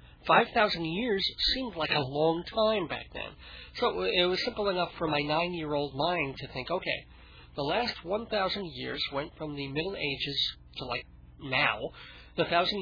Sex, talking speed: male, 165 wpm